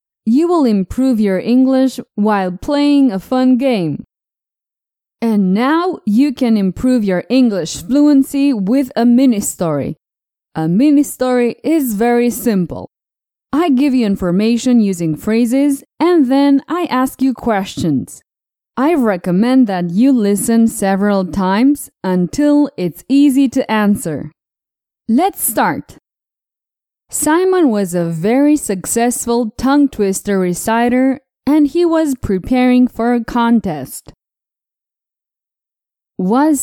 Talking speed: 110 wpm